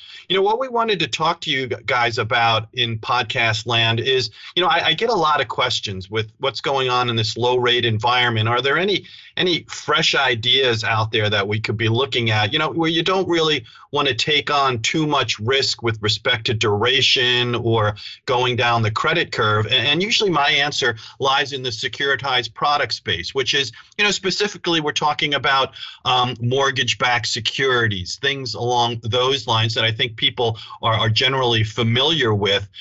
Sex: male